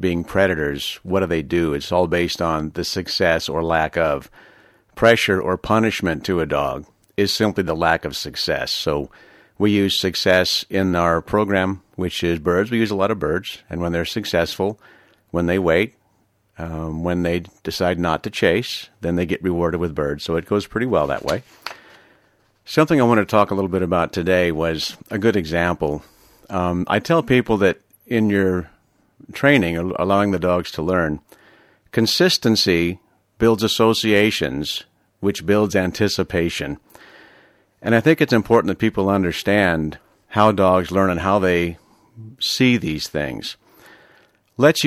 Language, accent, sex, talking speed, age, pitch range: English, American, male, 160 wpm, 50-69, 85-105 Hz